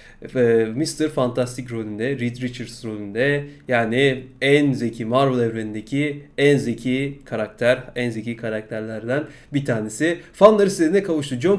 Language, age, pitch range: Turkish, 30-49, 120-150 Hz